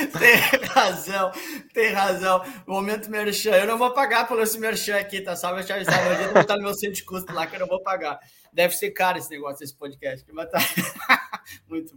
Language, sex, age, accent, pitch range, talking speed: Portuguese, male, 20-39, Brazilian, 180-230 Hz, 210 wpm